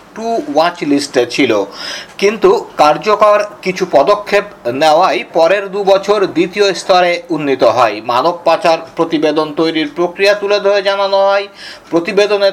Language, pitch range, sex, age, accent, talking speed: Bengali, 175-205 Hz, male, 50-69, native, 120 wpm